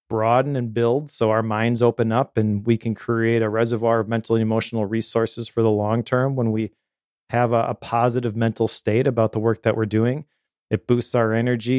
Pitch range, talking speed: 110-130 Hz, 210 wpm